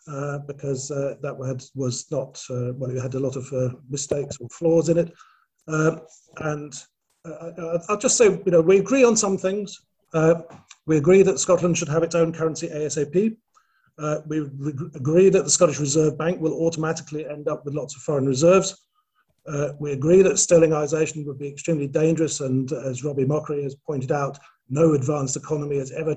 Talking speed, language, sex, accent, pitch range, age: 190 wpm, English, male, British, 140-165 Hz, 50-69